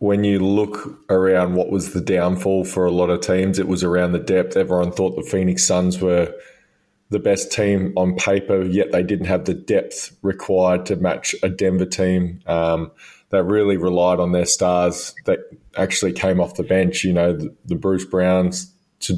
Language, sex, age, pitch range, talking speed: English, male, 20-39, 90-100 Hz, 190 wpm